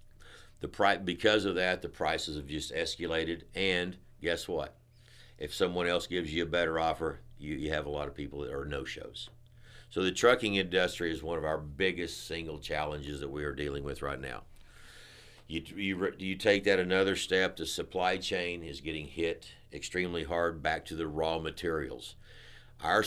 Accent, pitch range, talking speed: American, 75-90 Hz, 175 wpm